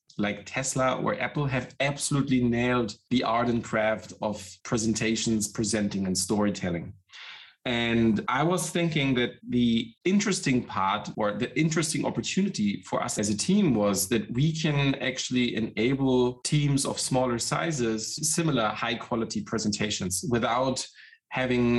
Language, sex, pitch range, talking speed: English, male, 115-145 Hz, 130 wpm